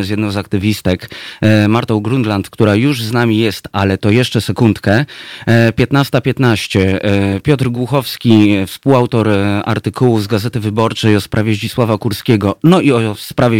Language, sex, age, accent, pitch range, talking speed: Polish, male, 30-49, native, 105-125 Hz, 135 wpm